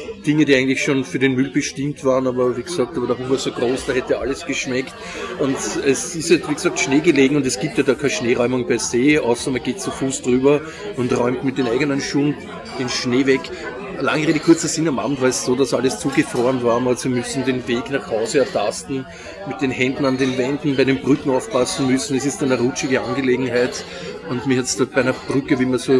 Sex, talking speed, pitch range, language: male, 230 wpm, 125-140 Hz, German